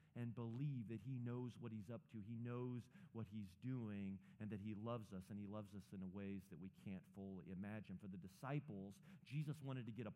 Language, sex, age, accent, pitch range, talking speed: English, male, 40-59, American, 115-165 Hz, 225 wpm